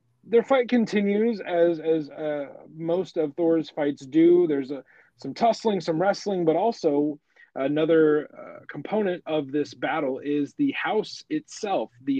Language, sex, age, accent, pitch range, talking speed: English, male, 30-49, American, 120-165 Hz, 150 wpm